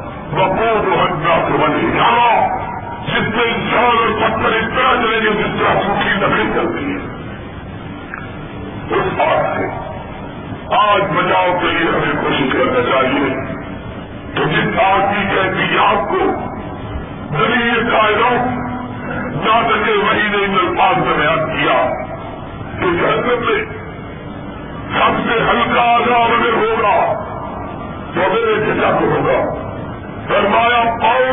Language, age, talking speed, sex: Urdu, 50-69, 110 wpm, female